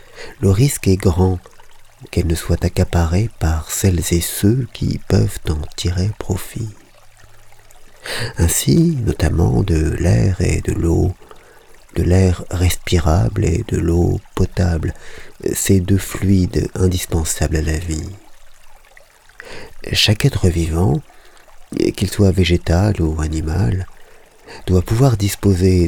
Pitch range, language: 85-105 Hz, French